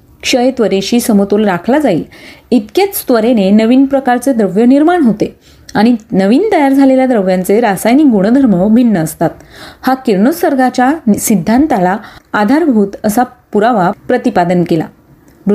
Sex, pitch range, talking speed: female, 200-265 Hz, 65 wpm